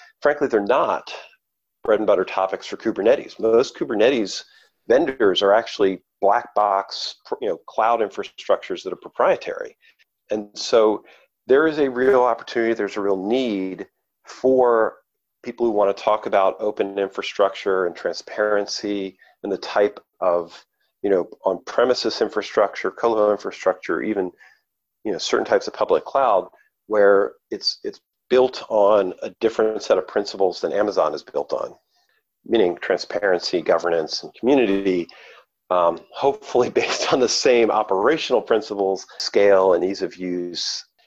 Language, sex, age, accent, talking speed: English, male, 40-59, American, 140 wpm